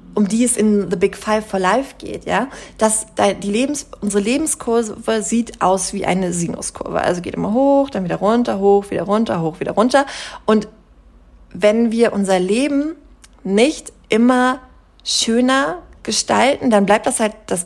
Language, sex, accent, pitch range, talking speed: German, female, German, 200-255 Hz, 165 wpm